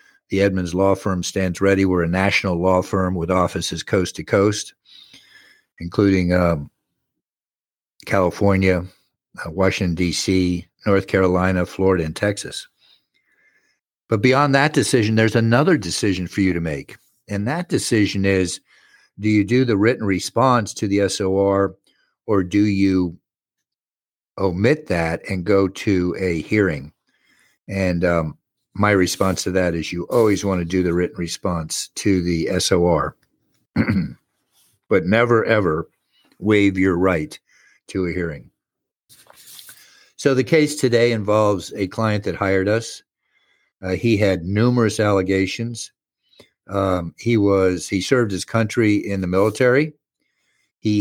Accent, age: American, 50-69